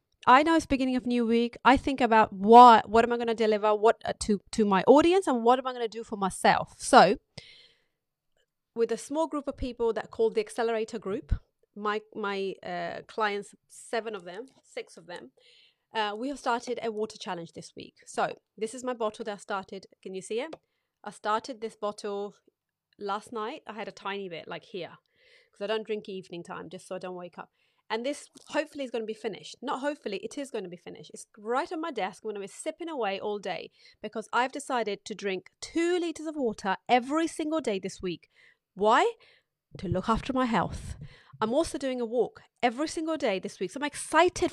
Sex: female